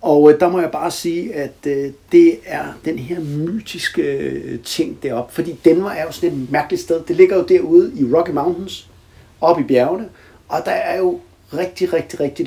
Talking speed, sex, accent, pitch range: 190 wpm, male, native, 125-180 Hz